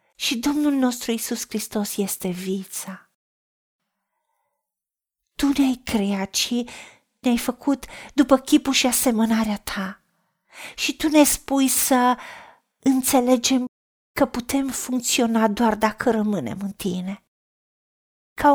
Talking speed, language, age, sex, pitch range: 105 wpm, Romanian, 50-69, female, 215-275 Hz